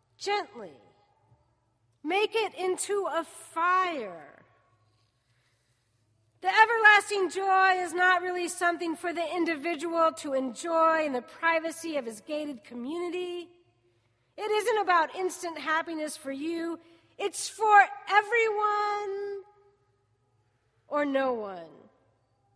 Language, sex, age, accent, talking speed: English, female, 40-59, American, 100 wpm